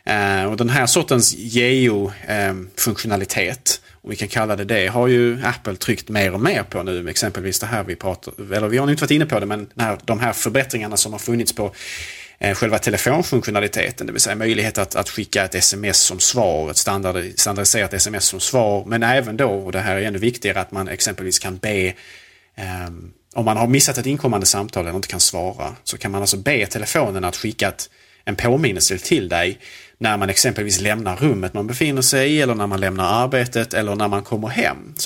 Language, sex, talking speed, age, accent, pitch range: Swedish, male, 200 wpm, 30-49, Norwegian, 95-120 Hz